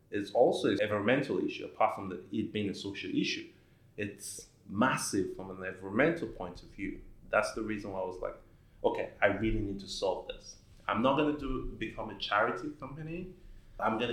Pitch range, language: 95-115 Hz, English